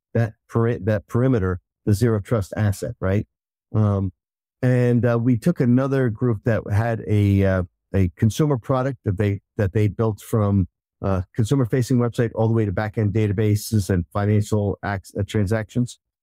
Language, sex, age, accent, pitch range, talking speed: English, male, 50-69, American, 105-120 Hz, 165 wpm